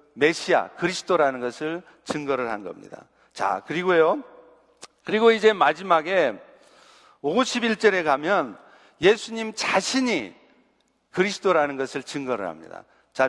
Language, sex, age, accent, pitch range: Korean, male, 50-69, native, 155-205 Hz